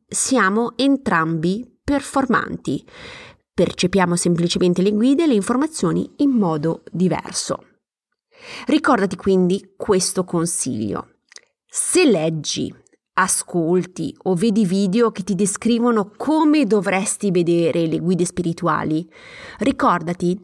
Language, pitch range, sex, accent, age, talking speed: Italian, 180-255 Hz, female, native, 30-49, 95 wpm